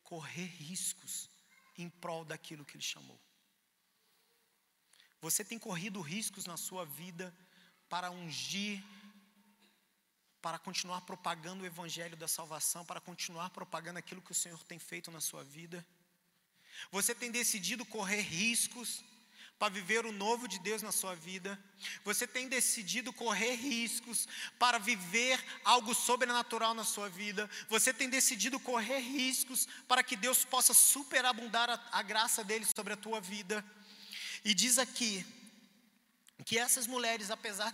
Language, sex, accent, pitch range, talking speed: Gujarati, male, Brazilian, 180-230 Hz, 140 wpm